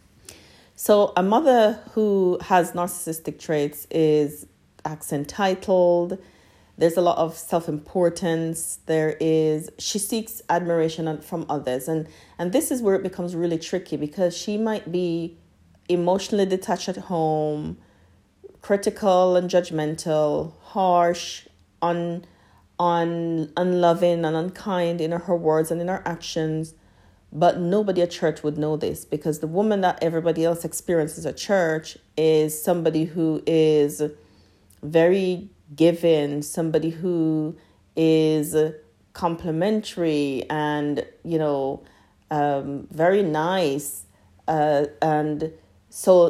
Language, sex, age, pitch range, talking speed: English, female, 40-59, 150-180 Hz, 115 wpm